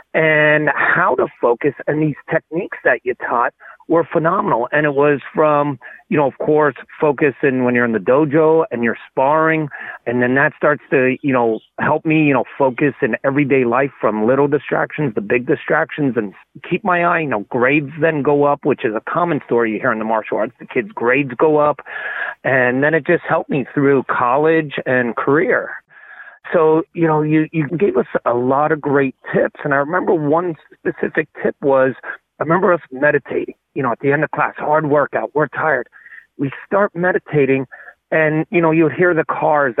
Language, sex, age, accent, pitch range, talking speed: English, male, 40-59, American, 130-160 Hz, 200 wpm